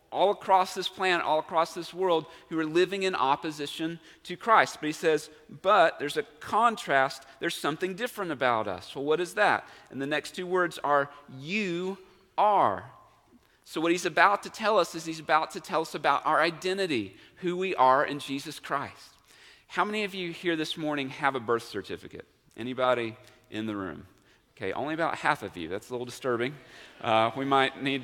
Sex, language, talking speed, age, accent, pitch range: male, English, 195 wpm, 40-59, American, 135-180 Hz